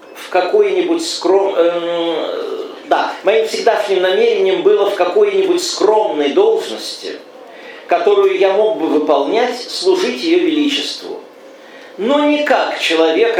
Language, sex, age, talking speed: English, male, 50-69, 110 wpm